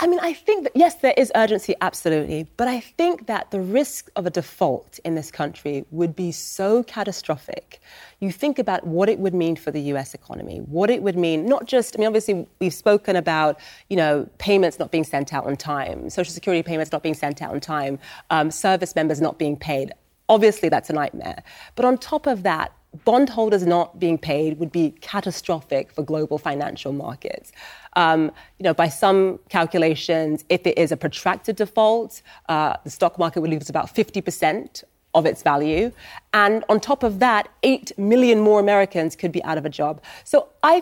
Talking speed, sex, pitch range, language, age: 200 wpm, female, 160-220 Hz, English, 30-49